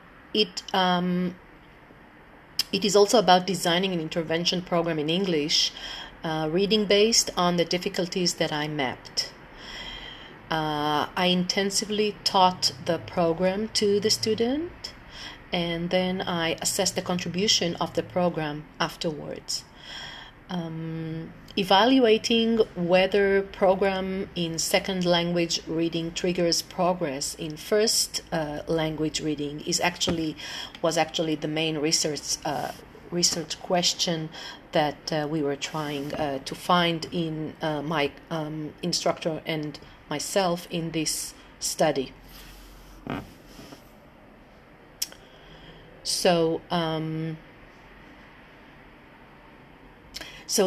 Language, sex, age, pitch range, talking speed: English, female, 40-59, 155-185 Hz, 100 wpm